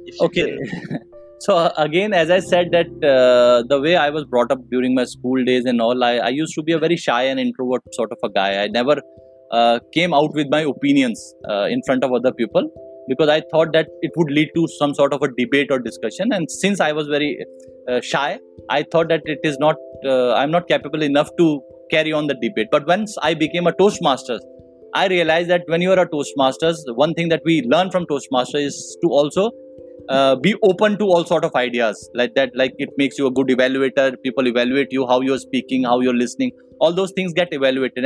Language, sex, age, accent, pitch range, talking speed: Hindi, male, 20-39, native, 130-175 Hz, 230 wpm